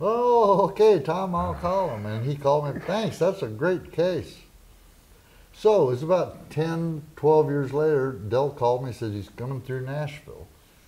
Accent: American